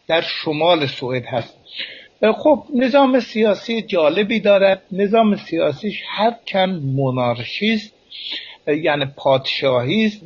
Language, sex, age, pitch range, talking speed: Persian, male, 60-79, 145-215 Hz, 95 wpm